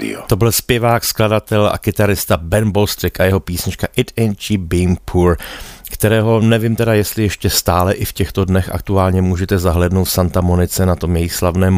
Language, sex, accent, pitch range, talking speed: Czech, male, native, 85-95 Hz, 185 wpm